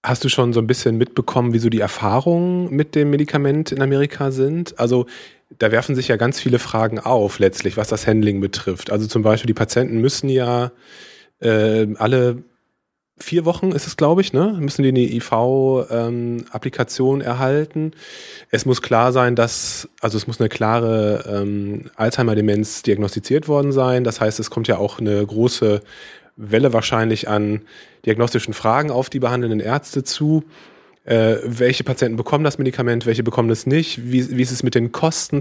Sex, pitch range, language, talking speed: male, 110-135 Hz, German, 175 wpm